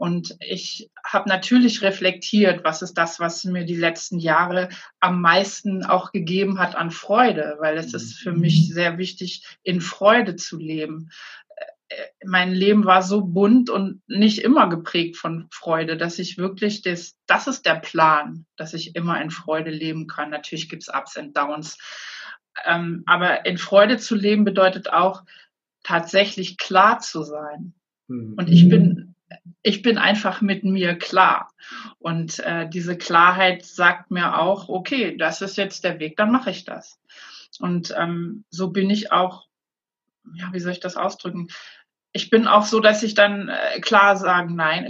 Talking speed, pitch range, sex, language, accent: 165 wpm, 170-200 Hz, female, German, German